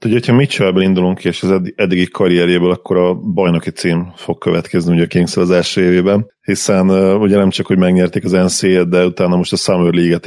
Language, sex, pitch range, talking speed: Hungarian, male, 90-100 Hz, 200 wpm